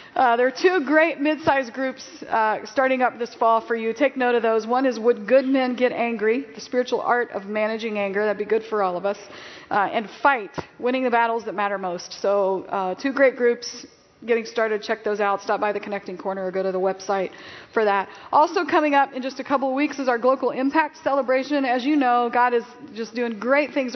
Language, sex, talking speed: English, female, 235 wpm